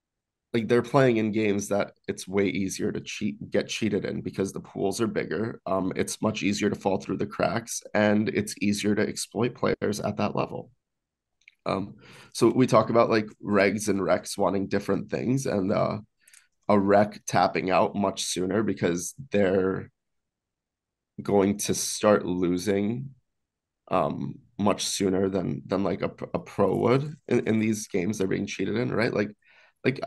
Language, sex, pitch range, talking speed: English, male, 95-110 Hz, 170 wpm